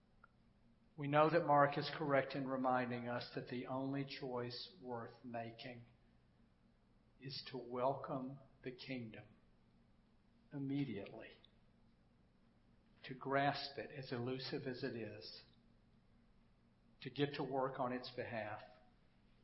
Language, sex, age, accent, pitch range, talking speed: English, male, 50-69, American, 115-135 Hz, 110 wpm